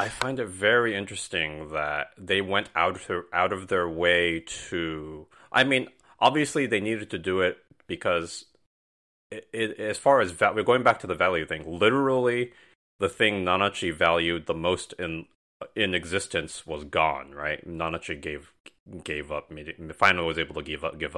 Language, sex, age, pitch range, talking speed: English, male, 30-49, 80-95 Hz, 180 wpm